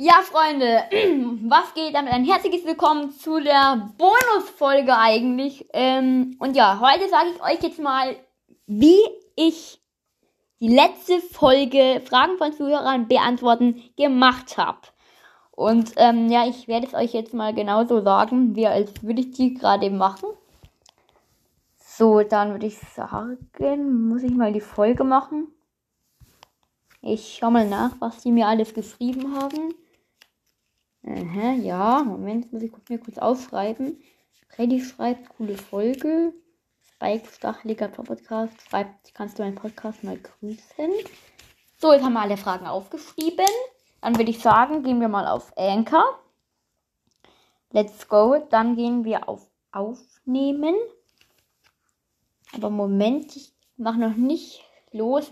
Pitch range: 220-300 Hz